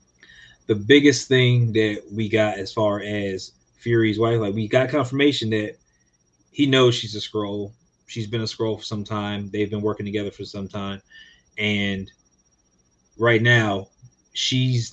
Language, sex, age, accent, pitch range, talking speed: English, male, 30-49, American, 100-120 Hz, 155 wpm